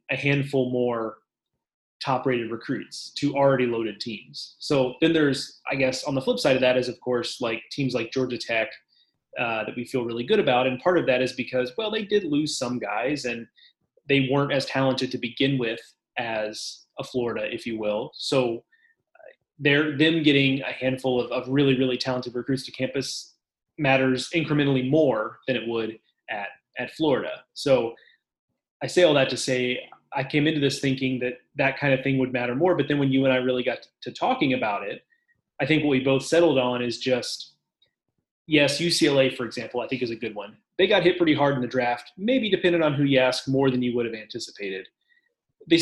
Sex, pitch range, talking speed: male, 125-145 Hz, 205 wpm